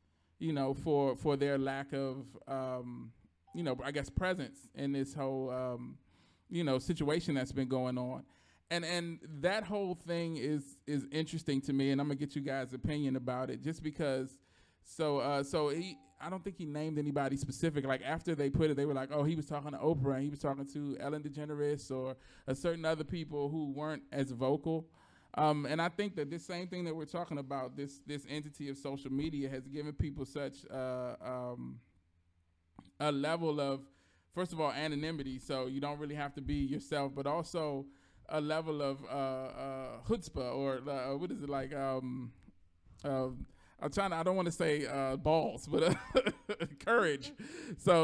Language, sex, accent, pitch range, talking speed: English, male, American, 135-160 Hz, 195 wpm